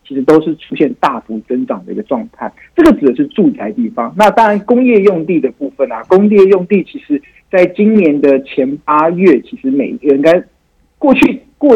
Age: 50-69